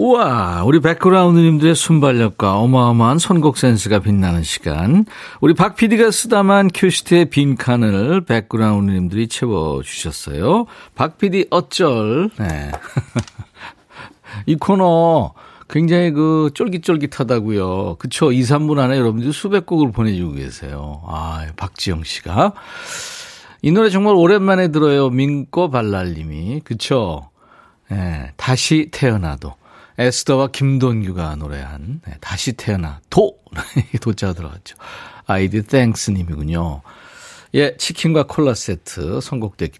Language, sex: Korean, male